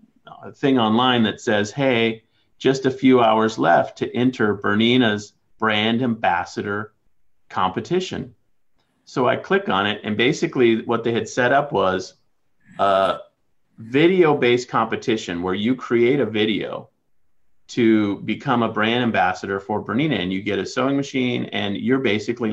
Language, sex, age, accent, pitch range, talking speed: English, male, 40-59, American, 110-140 Hz, 145 wpm